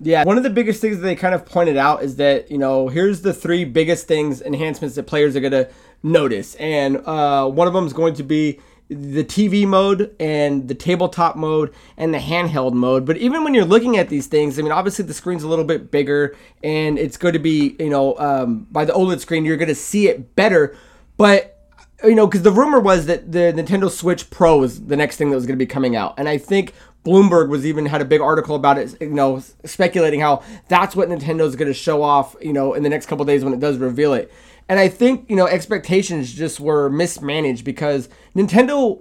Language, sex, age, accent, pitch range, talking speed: English, male, 20-39, American, 145-185 Hz, 235 wpm